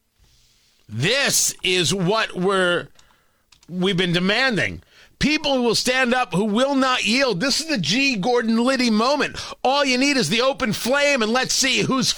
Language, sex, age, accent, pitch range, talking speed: English, male, 40-59, American, 165-235 Hz, 170 wpm